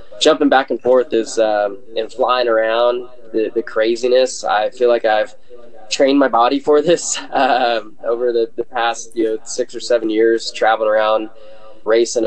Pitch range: 110-130 Hz